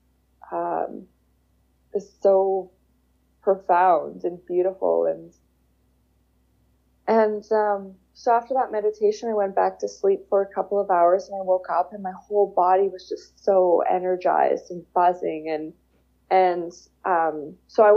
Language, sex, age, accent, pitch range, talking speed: English, female, 20-39, American, 160-205 Hz, 140 wpm